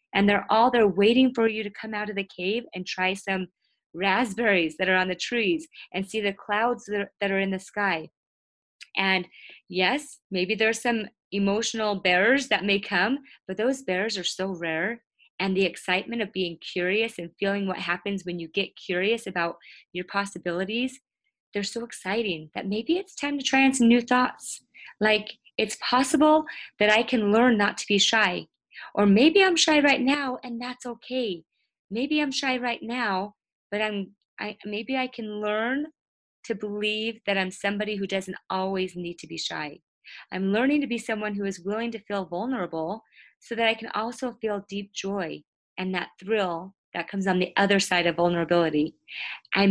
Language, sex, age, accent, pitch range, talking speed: English, female, 20-39, American, 185-235 Hz, 180 wpm